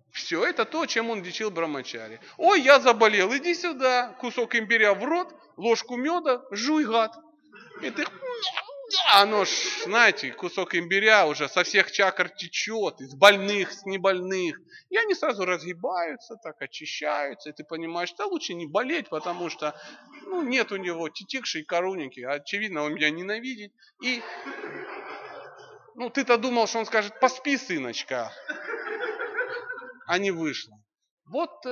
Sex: male